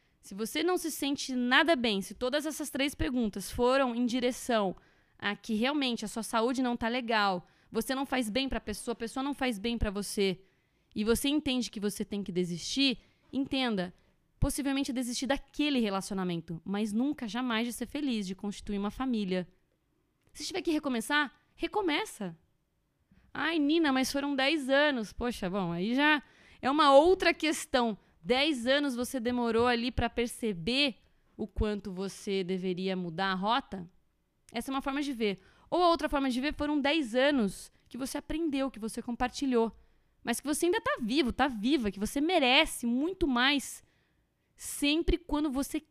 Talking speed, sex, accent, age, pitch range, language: 170 wpm, female, Brazilian, 20-39, 210-290 Hz, Portuguese